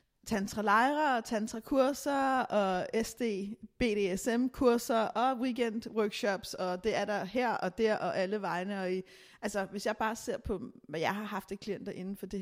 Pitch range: 200-235 Hz